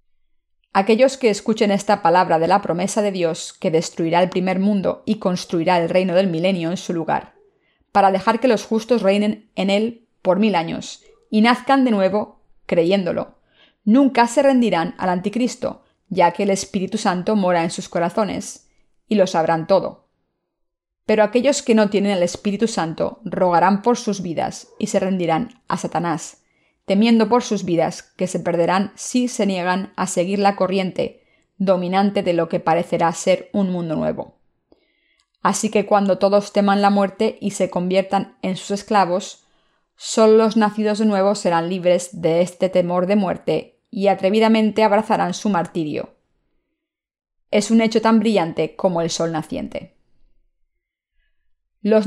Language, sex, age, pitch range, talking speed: Spanish, female, 30-49, 180-220 Hz, 160 wpm